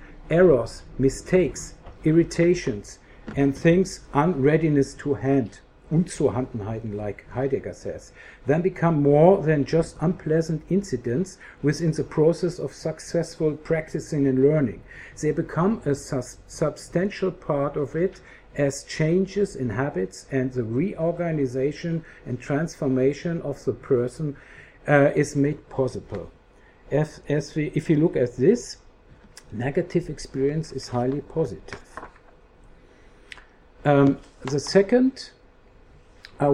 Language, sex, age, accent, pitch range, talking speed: English, male, 50-69, German, 130-160 Hz, 110 wpm